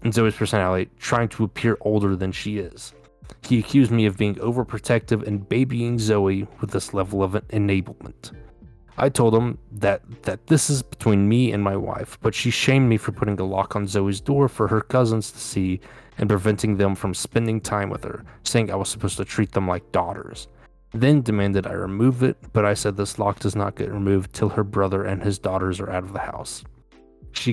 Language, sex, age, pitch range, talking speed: English, male, 20-39, 100-115 Hz, 205 wpm